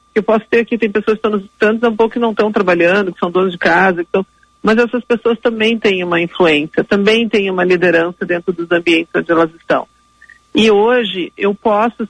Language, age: Portuguese, 50-69